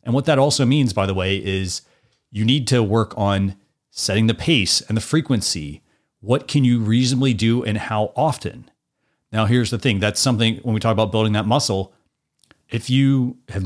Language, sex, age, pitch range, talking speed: English, male, 30-49, 100-130 Hz, 195 wpm